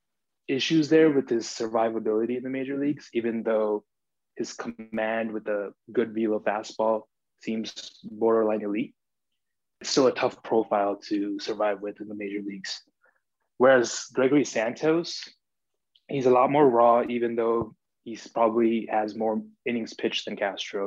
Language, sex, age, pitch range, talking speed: English, male, 20-39, 110-125 Hz, 150 wpm